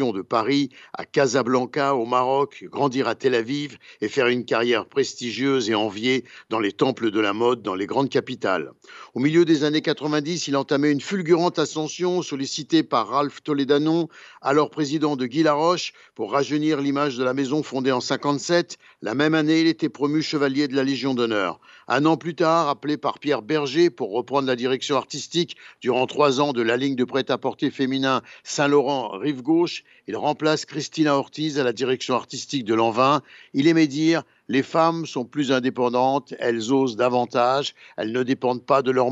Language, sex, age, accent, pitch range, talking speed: Italian, male, 60-79, French, 125-155 Hz, 180 wpm